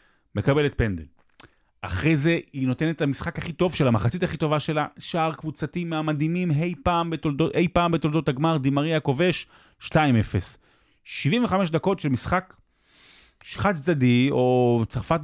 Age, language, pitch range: 30-49, Hebrew, 110-155 Hz